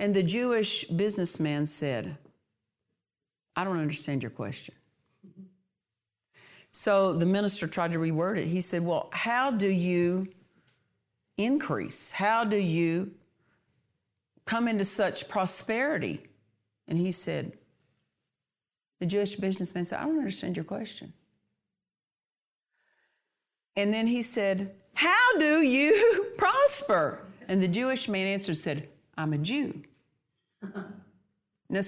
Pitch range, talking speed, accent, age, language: 165-215 Hz, 115 wpm, American, 50-69, English